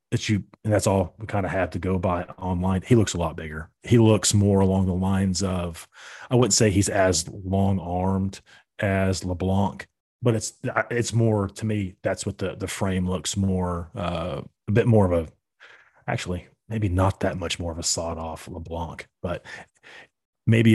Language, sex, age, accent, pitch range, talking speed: English, male, 30-49, American, 90-100 Hz, 185 wpm